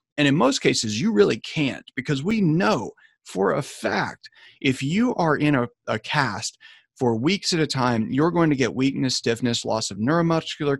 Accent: American